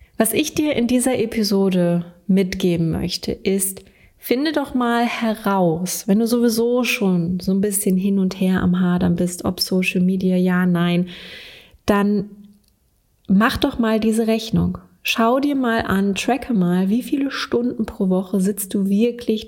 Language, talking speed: German, 155 wpm